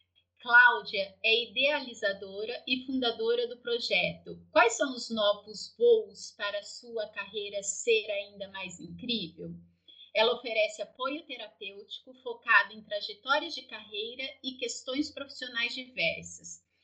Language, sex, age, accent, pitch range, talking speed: Portuguese, female, 30-49, Brazilian, 215-275 Hz, 120 wpm